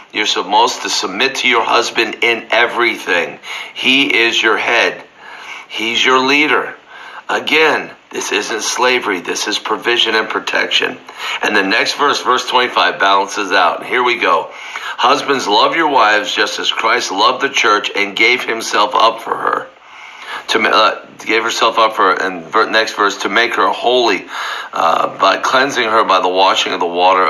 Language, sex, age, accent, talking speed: English, male, 50-69, American, 165 wpm